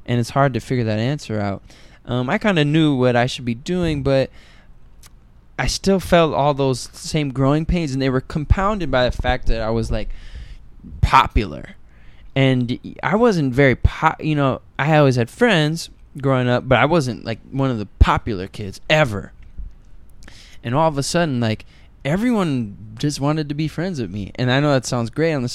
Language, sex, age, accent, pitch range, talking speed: English, male, 10-29, American, 110-145 Hz, 195 wpm